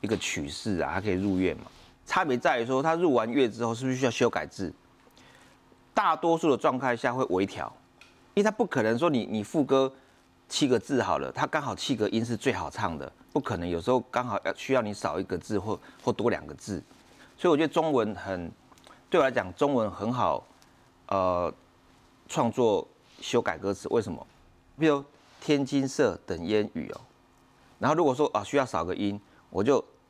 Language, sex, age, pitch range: Chinese, male, 30-49, 95-135 Hz